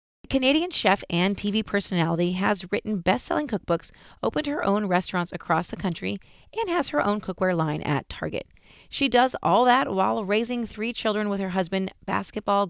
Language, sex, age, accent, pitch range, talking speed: English, female, 40-59, American, 170-225 Hz, 170 wpm